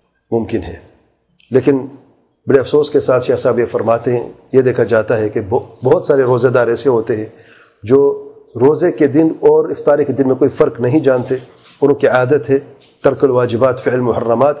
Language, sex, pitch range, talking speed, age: English, male, 120-145 Hz, 175 wpm, 40-59